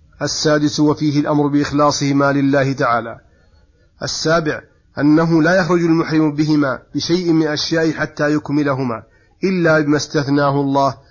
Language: Arabic